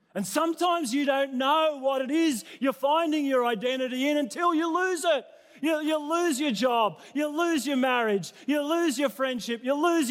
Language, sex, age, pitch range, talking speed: English, male, 40-59, 255-310 Hz, 190 wpm